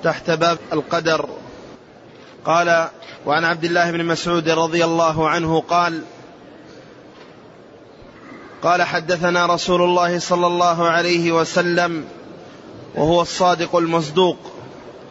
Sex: male